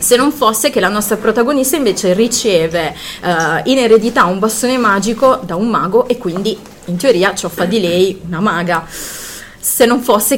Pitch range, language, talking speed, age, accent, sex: 180-225 Hz, Italian, 175 wpm, 30-49, native, female